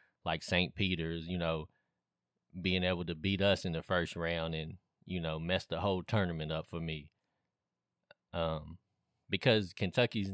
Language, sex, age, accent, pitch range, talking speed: English, male, 20-39, American, 85-100 Hz, 155 wpm